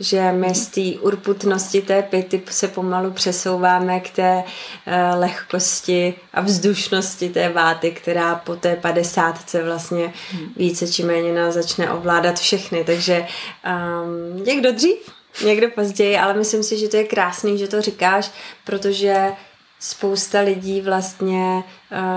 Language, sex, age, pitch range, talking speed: Czech, female, 20-39, 175-195 Hz, 140 wpm